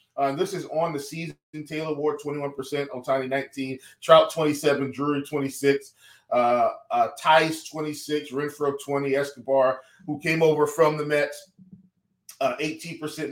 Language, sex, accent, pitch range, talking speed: English, male, American, 140-180 Hz, 130 wpm